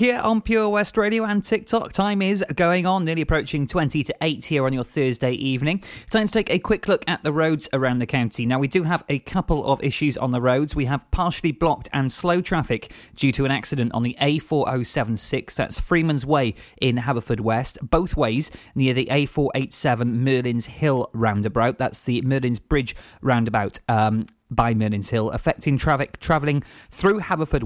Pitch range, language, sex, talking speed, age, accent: 120-155 Hz, English, male, 185 wpm, 20-39, British